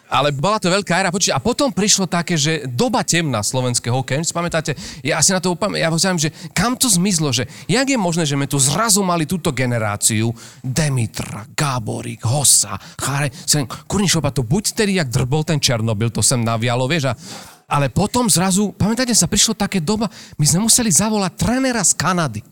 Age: 30-49